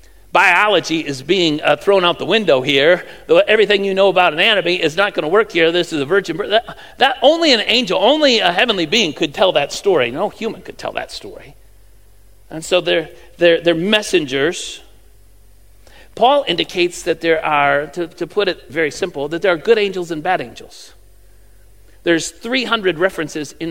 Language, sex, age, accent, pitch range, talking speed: English, male, 50-69, American, 155-215 Hz, 185 wpm